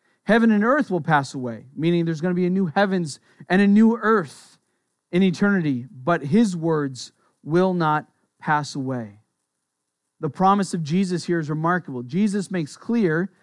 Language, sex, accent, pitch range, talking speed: English, male, American, 150-200 Hz, 165 wpm